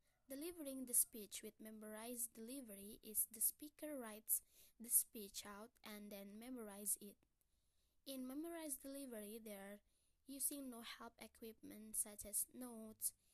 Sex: female